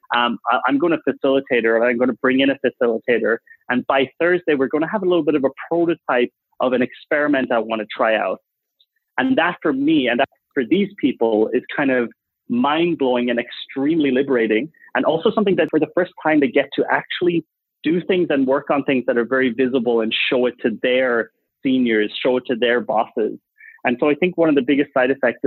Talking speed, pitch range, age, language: 225 wpm, 120-165 Hz, 30-49, English